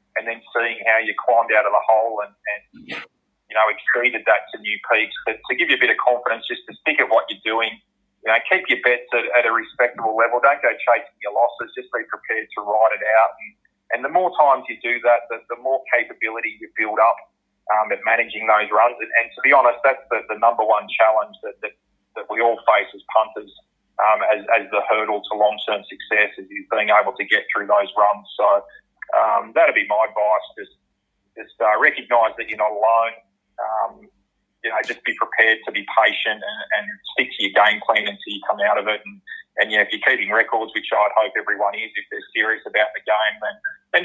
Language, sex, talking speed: English, male, 230 wpm